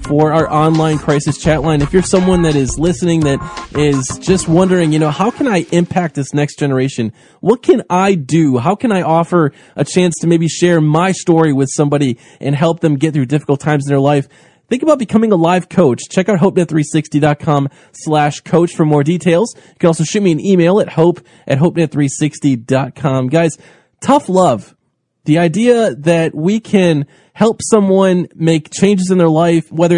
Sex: male